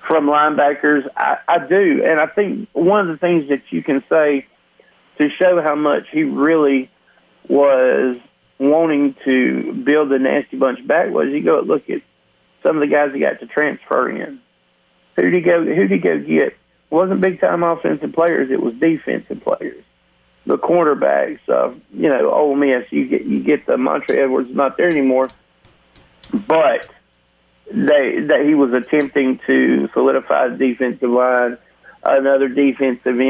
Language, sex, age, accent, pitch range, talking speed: English, male, 40-59, American, 130-160 Hz, 160 wpm